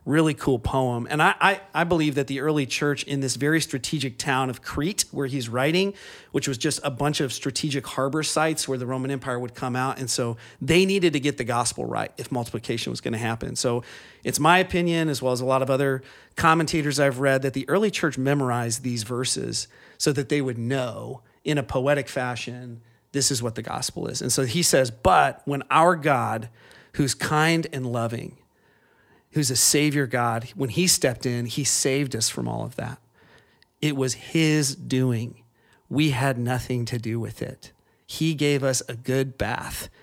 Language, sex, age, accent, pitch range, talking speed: English, male, 40-59, American, 120-145 Hz, 195 wpm